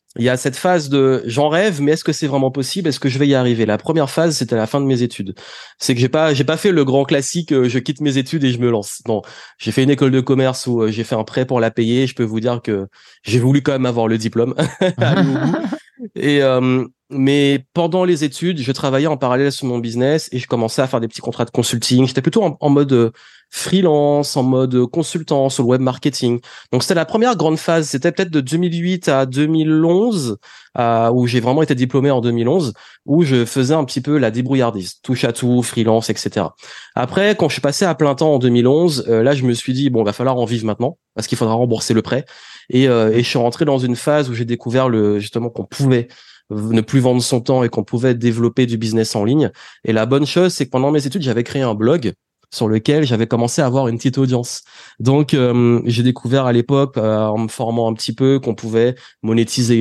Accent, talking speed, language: French, 240 wpm, French